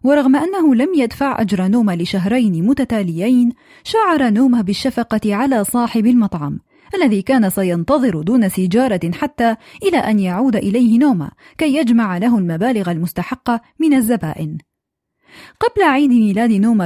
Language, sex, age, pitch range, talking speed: Arabic, female, 20-39, 205-270 Hz, 130 wpm